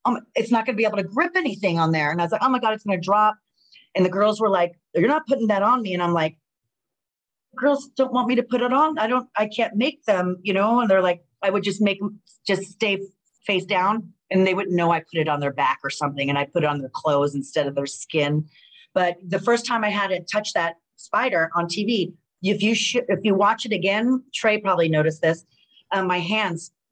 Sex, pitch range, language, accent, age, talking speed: female, 165-215 Hz, English, American, 40-59, 255 wpm